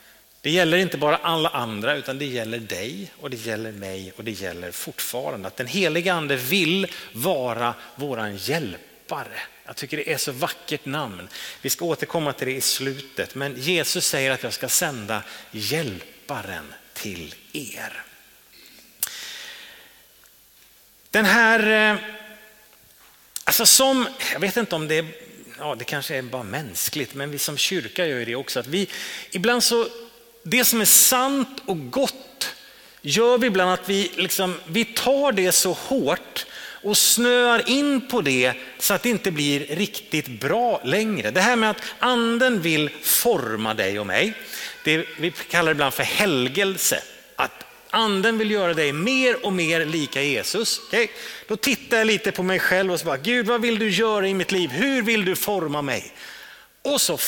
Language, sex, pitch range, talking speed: Swedish, male, 145-230 Hz, 165 wpm